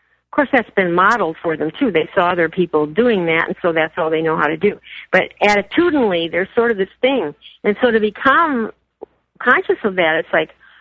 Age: 50-69